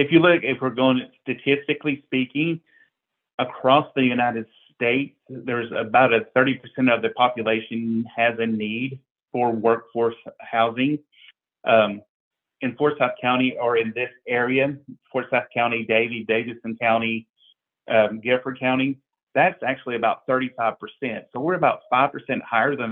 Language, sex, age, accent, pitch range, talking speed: English, male, 40-59, American, 115-130 Hz, 135 wpm